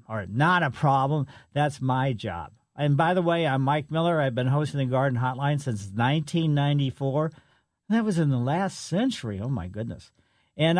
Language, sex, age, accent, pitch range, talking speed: English, male, 50-69, American, 125-160 Hz, 180 wpm